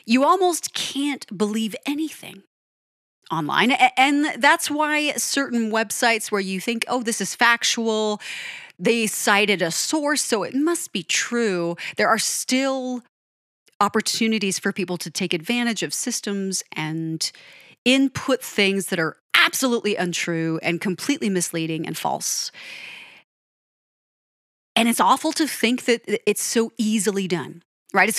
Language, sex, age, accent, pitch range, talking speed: English, female, 30-49, American, 175-240 Hz, 130 wpm